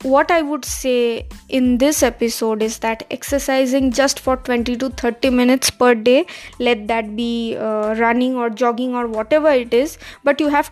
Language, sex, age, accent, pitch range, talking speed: English, female, 20-39, Indian, 235-275 Hz, 180 wpm